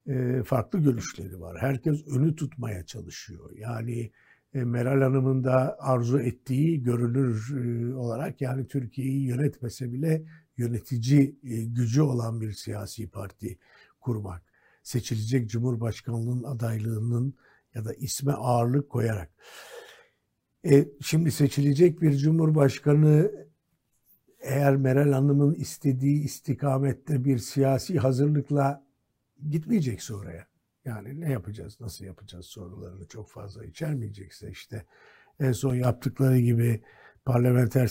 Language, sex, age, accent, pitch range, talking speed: Turkish, male, 60-79, native, 115-145 Hz, 100 wpm